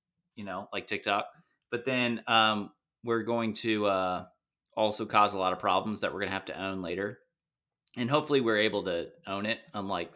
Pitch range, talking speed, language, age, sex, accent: 110-145 Hz, 195 wpm, English, 30-49, male, American